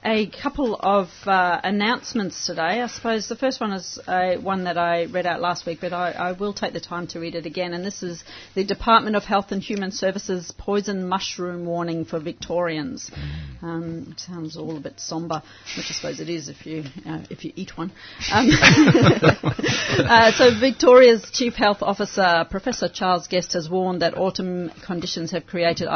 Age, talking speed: 40-59, 190 wpm